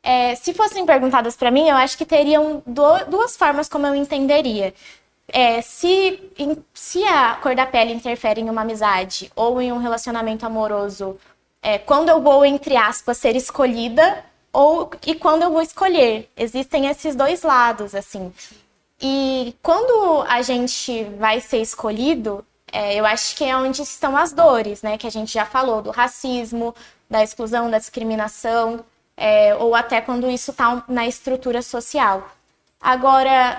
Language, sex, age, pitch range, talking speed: Portuguese, female, 20-39, 230-305 Hz, 150 wpm